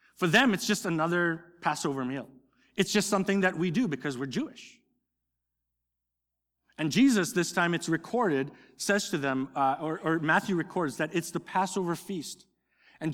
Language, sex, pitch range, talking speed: English, male, 140-205 Hz, 165 wpm